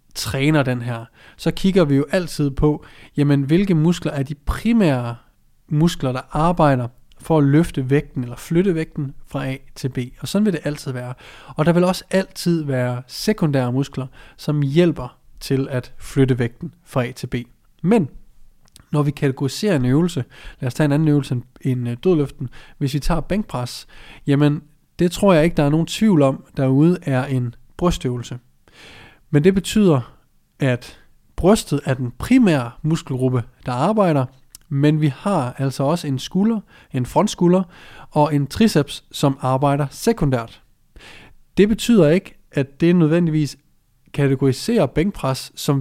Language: Danish